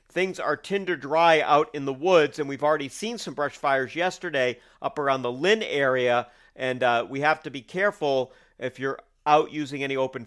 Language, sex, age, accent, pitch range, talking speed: English, male, 50-69, American, 130-175 Hz, 200 wpm